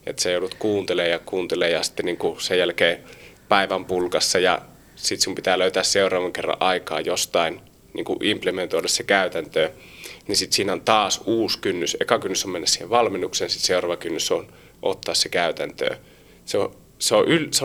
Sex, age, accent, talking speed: male, 30-49, native, 165 wpm